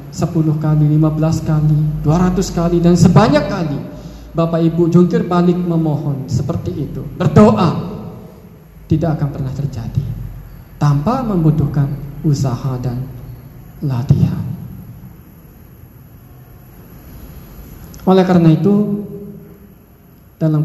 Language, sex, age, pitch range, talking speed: Indonesian, male, 20-39, 140-175 Hz, 85 wpm